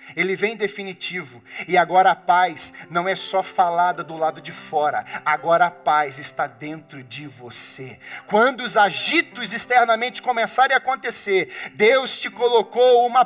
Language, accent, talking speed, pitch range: Portuguese, Brazilian, 150 wpm, 160-255 Hz